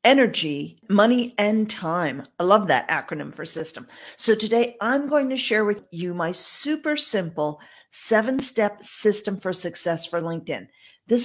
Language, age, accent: English, 50-69, American